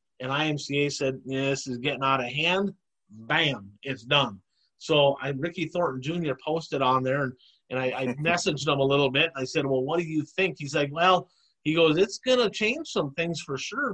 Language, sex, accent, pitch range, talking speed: English, male, American, 130-160 Hz, 210 wpm